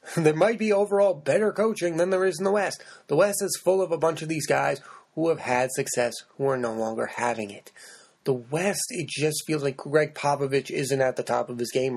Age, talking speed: 30-49, 235 wpm